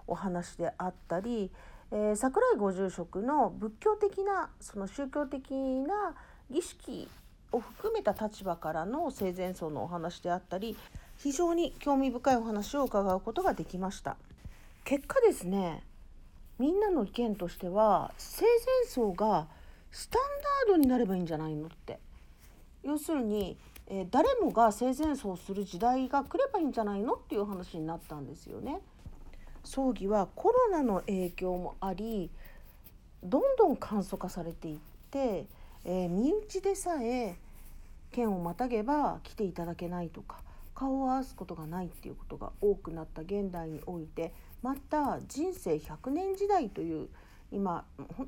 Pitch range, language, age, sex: 180-290 Hz, Japanese, 40-59, female